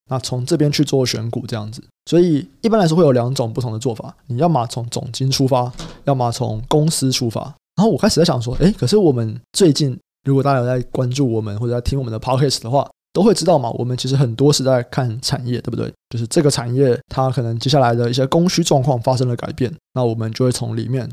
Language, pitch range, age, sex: Chinese, 120-150 Hz, 20-39, male